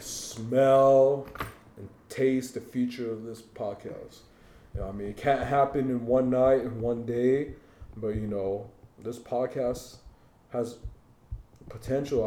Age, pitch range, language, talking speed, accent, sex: 30-49, 110-125 Hz, English, 125 wpm, American, male